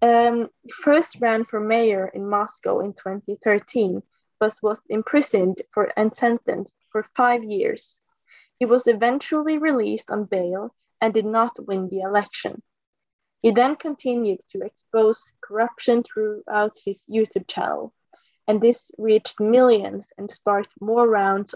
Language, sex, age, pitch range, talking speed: English, female, 20-39, 200-240 Hz, 130 wpm